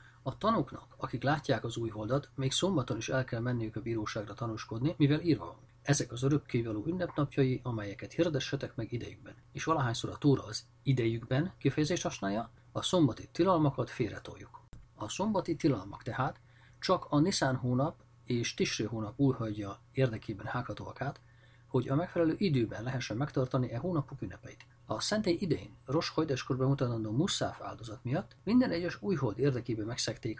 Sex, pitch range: male, 115-145 Hz